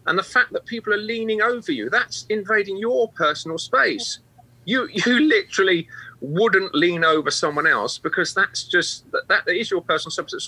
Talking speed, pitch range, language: 185 wpm, 145-215 Hz, English